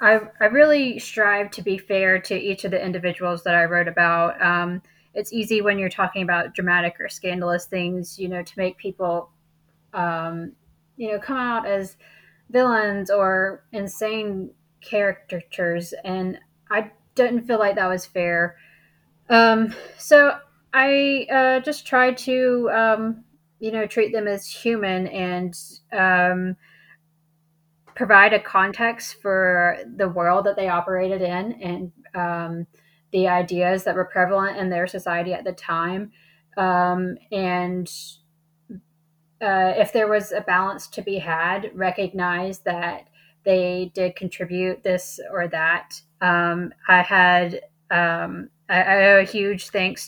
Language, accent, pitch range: English, American, 175-210 Hz